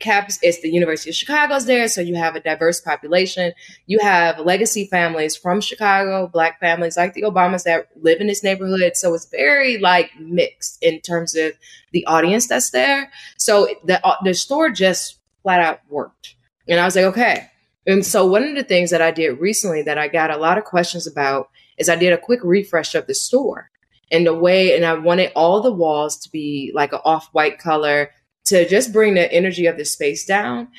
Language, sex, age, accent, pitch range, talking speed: English, female, 20-39, American, 160-195 Hz, 210 wpm